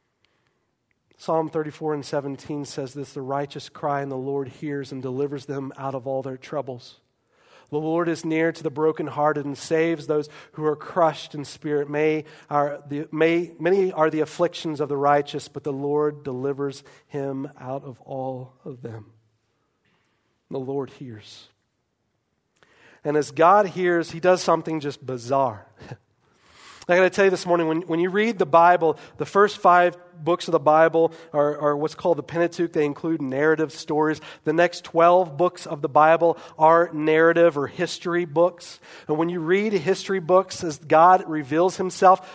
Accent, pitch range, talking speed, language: American, 140-170 Hz, 165 wpm, English